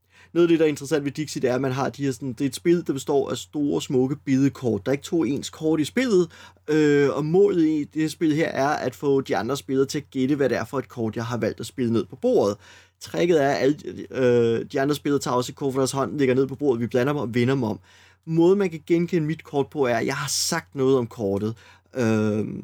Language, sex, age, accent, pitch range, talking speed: Danish, male, 30-49, native, 120-155 Hz, 280 wpm